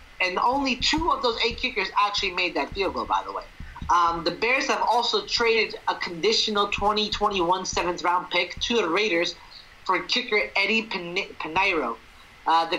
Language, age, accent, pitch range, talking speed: English, 30-49, American, 180-220 Hz, 175 wpm